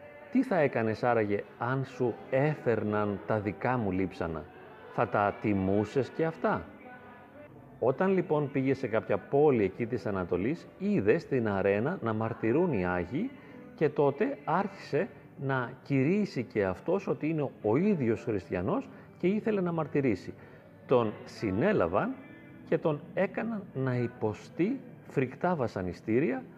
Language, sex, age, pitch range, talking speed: Greek, male, 40-59, 110-150 Hz, 130 wpm